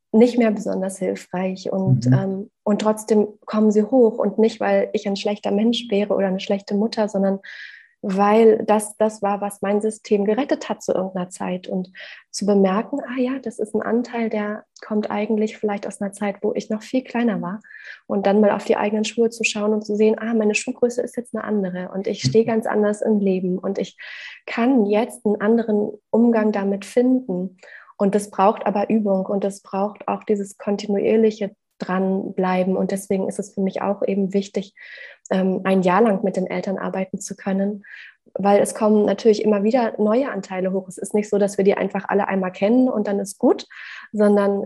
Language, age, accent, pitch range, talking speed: German, 30-49, German, 195-220 Hz, 200 wpm